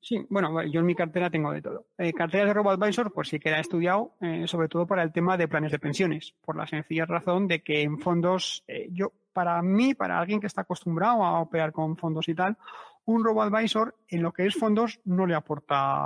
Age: 30-49